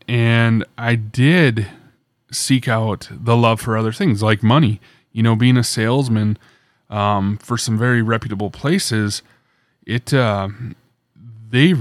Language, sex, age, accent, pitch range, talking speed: English, male, 20-39, American, 105-125 Hz, 130 wpm